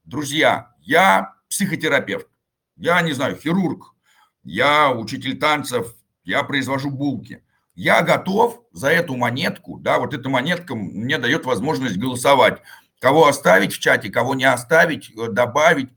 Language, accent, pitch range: Russian, native, 135-165 Hz